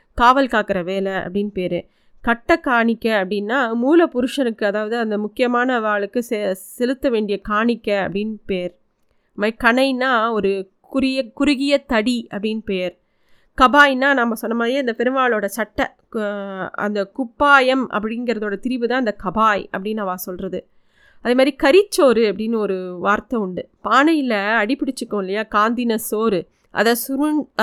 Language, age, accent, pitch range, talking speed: Tamil, 30-49, native, 205-250 Hz, 125 wpm